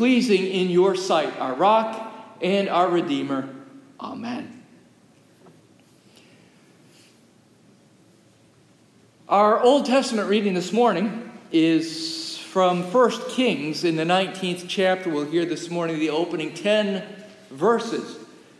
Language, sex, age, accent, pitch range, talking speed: English, male, 50-69, American, 160-220 Hz, 105 wpm